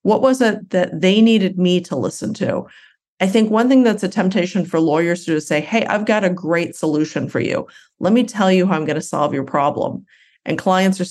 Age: 40-59